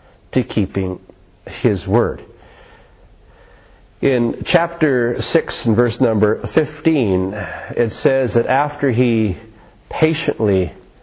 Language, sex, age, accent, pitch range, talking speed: English, male, 50-69, American, 105-140 Hz, 90 wpm